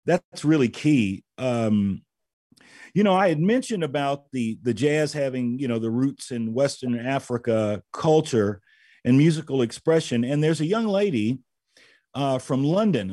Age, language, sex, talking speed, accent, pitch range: 40-59, English, male, 150 wpm, American, 120-160 Hz